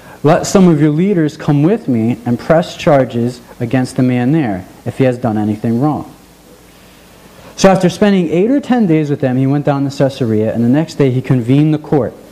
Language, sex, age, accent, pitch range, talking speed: English, male, 40-59, American, 125-160 Hz, 210 wpm